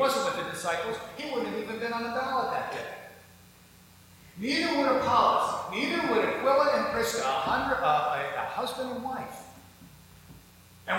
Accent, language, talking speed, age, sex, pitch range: American, English, 165 wpm, 50-69, male, 155-250 Hz